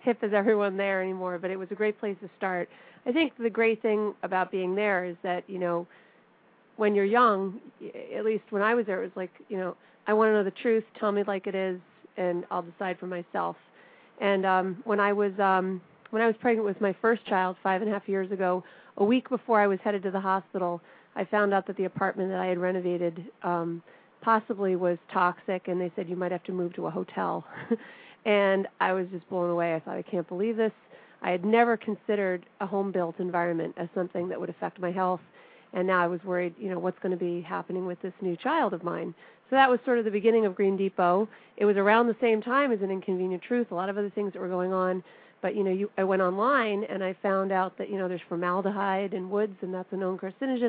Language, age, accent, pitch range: English, 40-59, American, 180-210 Hz